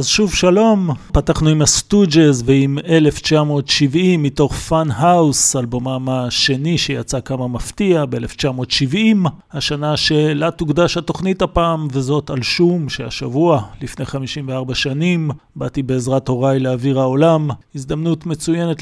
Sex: male